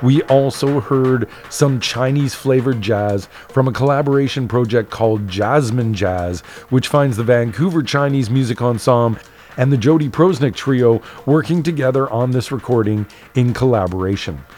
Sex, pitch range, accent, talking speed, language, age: male, 115-140 Hz, American, 130 wpm, English, 40-59